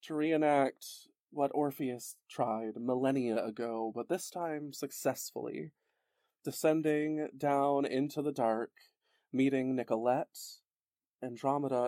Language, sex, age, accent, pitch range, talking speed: English, male, 30-49, American, 135-175 Hz, 95 wpm